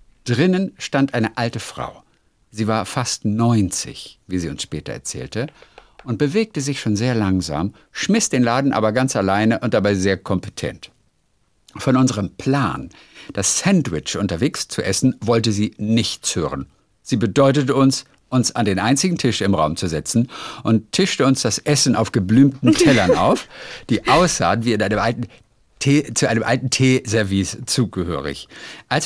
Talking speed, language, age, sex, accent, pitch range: 155 wpm, German, 50-69, male, German, 105-130 Hz